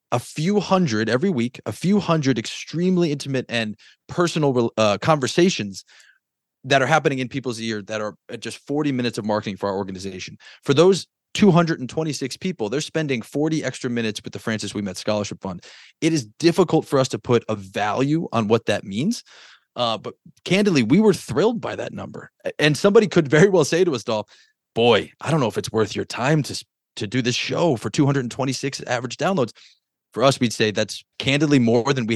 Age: 20-39